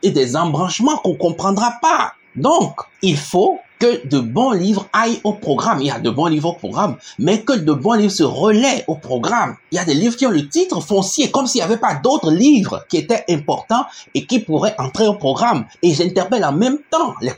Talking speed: 225 wpm